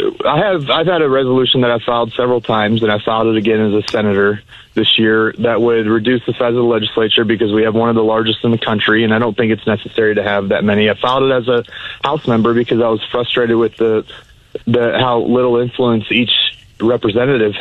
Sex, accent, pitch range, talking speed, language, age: male, American, 110-125 Hz, 230 wpm, English, 30-49